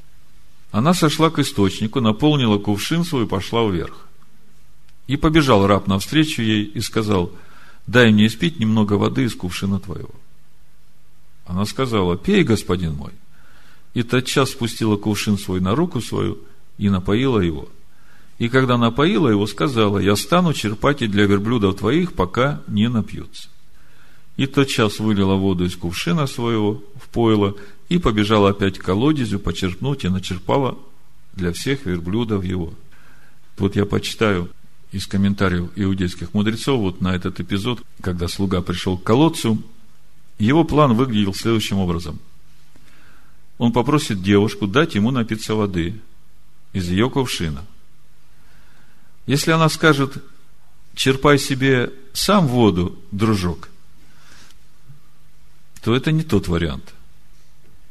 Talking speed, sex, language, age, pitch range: 125 wpm, male, Russian, 40-59, 95-130 Hz